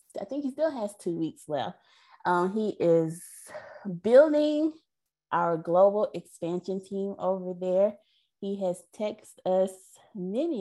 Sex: female